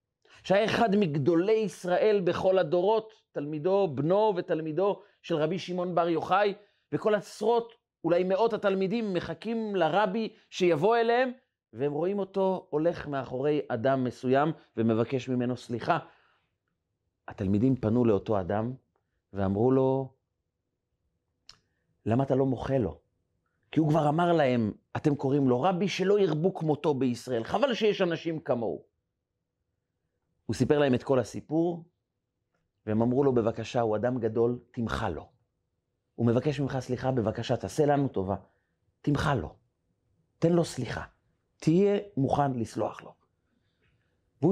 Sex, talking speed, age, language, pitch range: male, 125 wpm, 40-59, Hebrew, 125-190 Hz